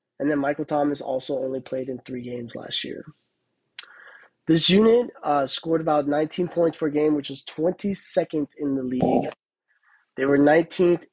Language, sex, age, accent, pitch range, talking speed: English, male, 20-39, American, 140-160 Hz, 160 wpm